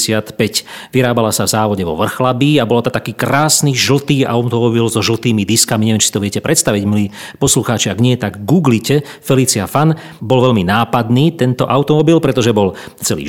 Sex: male